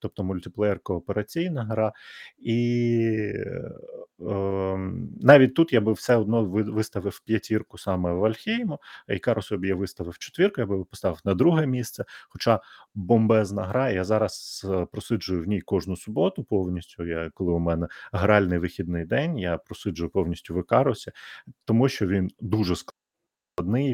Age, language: 30-49, Ukrainian